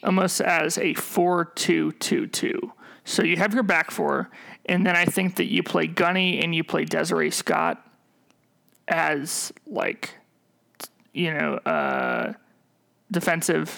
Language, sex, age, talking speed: English, male, 30-49, 125 wpm